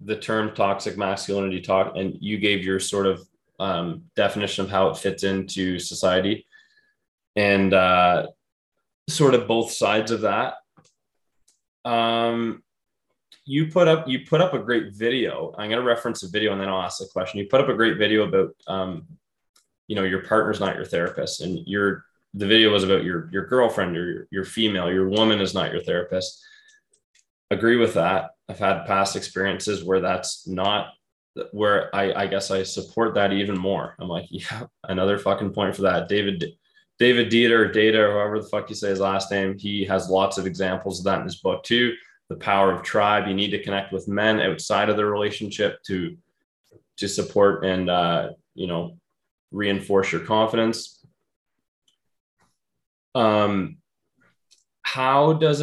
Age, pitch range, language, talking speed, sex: 20-39, 95-115 Hz, English, 170 wpm, male